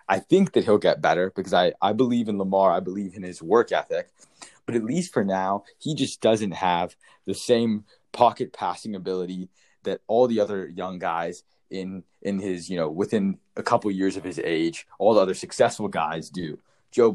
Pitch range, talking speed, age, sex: 95-120 Hz, 200 wpm, 20-39, male